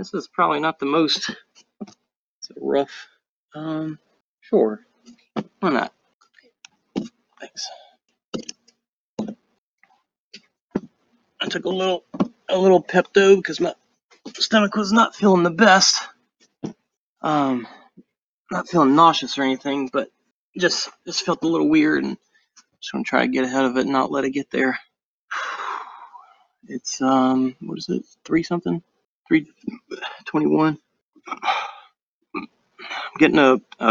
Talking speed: 120 wpm